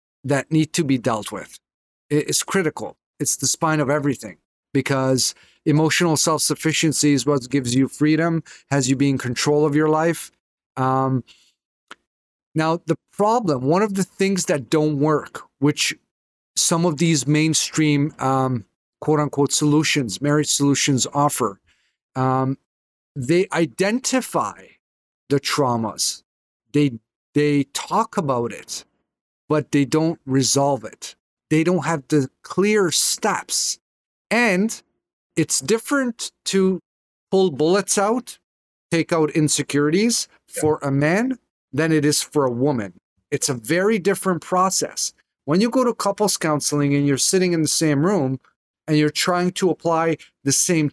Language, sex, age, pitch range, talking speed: English, male, 40-59, 140-170 Hz, 135 wpm